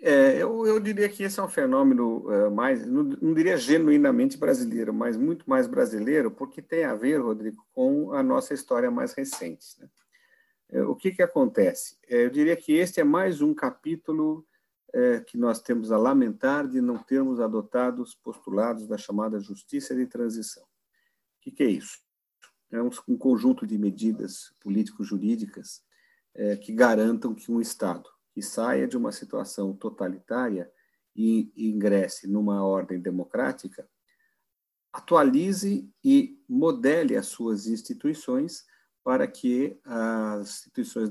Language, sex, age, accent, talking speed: Portuguese, male, 50-69, Brazilian, 140 wpm